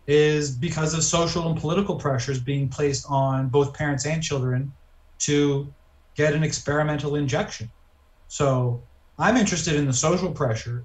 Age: 30-49